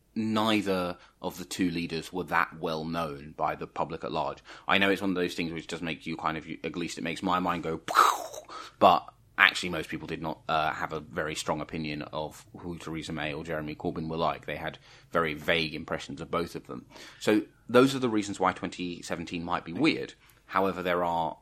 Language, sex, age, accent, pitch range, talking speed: English, male, 30-49, British, 80-95 Hz, 215 wpm